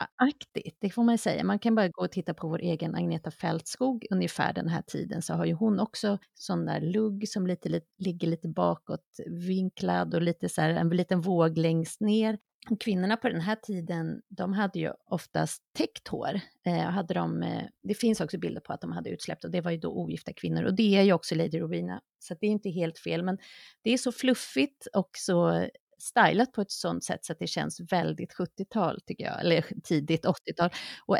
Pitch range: 170-215 Hz